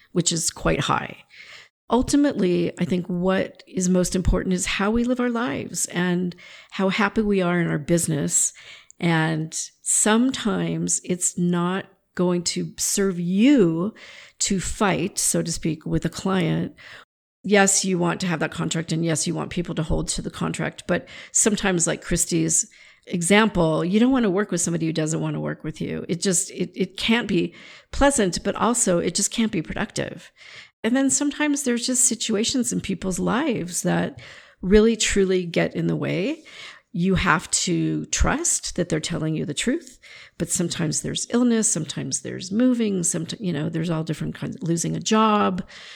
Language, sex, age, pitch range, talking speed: English, female, 50-69, 170-215 Hz, 175 wpm